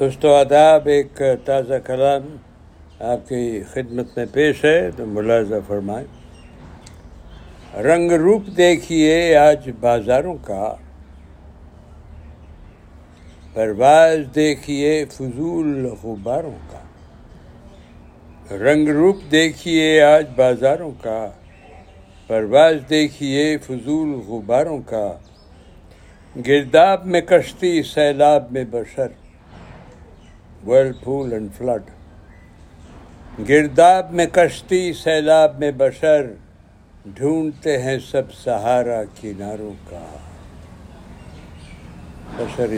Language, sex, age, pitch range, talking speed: Urdu, male, 60-79, 100-155 Hz, 85 wpm